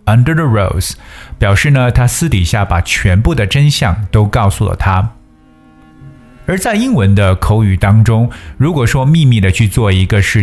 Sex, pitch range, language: male, 95-125 Hz, Chinese